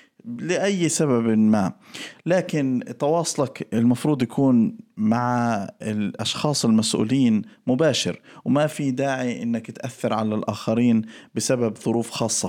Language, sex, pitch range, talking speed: Arabic, male, 110-135 Hz, 100 wpm